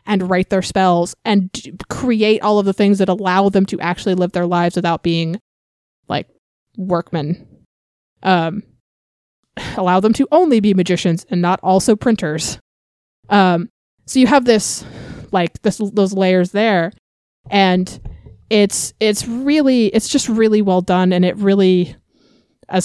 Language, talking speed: English, 150 wpm